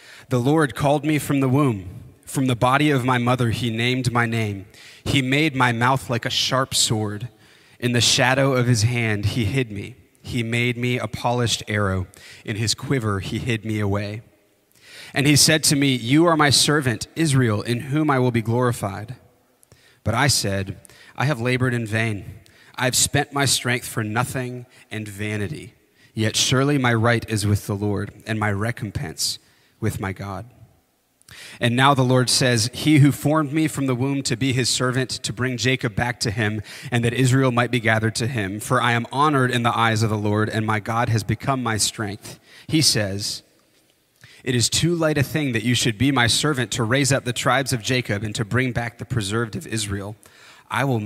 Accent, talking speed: American, 200 wpm